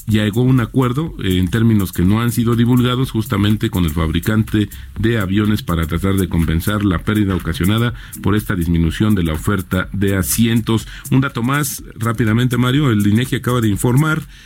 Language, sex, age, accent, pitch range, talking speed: Spanish, male, 40-59, Mexican, 100-130 Hz, 170 wpm